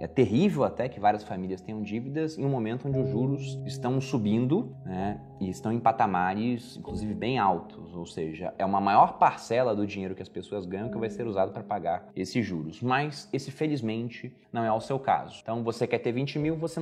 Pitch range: 105-155 Hz